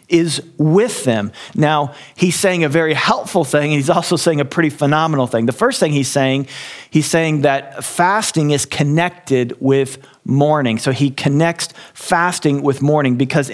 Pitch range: 135-165 Hz